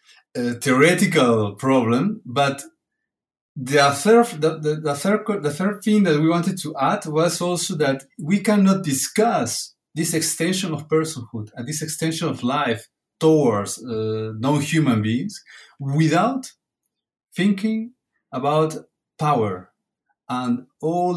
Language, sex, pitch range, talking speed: English, male, 115-160 Hz, 110 wpm